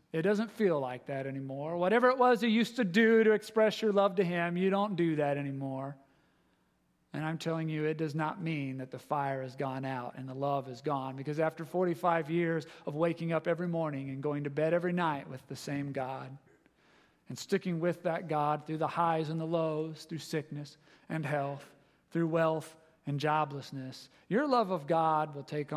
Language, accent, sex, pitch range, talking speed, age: English, American, male, 140-175 Hz, 205 wpm, 40-59